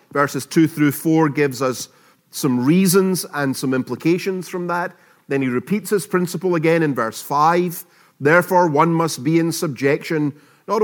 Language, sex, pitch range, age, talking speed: English, male, 130-175 Hz, 30-49, 160 wpm